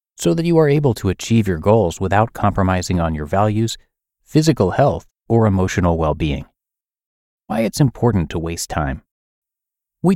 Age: 30-49